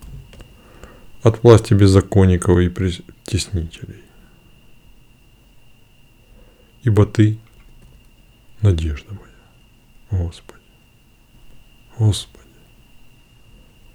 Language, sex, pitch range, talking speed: Russian, male, 90-120 Hz, 45 wpm